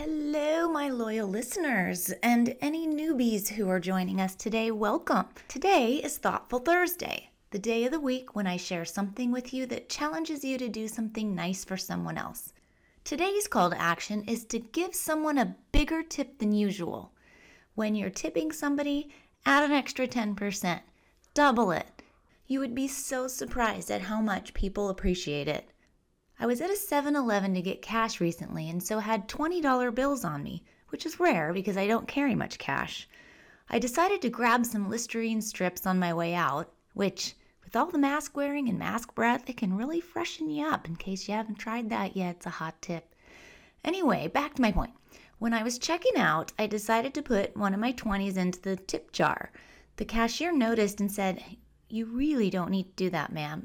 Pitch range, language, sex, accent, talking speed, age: 195-280 Hz, English, female, American, 190 wpm, 30-49